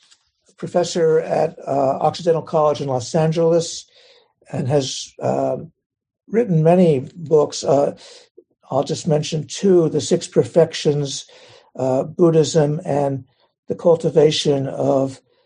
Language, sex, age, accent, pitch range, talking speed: English, male, 60-79, American, 130-165 Hz, 110 wpm